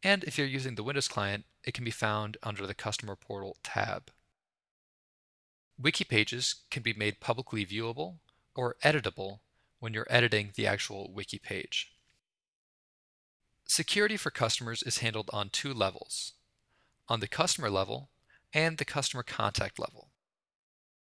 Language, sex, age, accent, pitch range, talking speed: English, male, 20-39, American, 105-140 Hz, 140 wpm